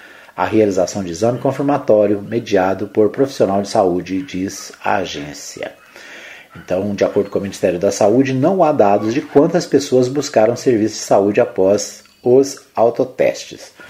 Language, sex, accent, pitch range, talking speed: Portuguese, male, Brazilian, 100-135 Hz, 145 wpm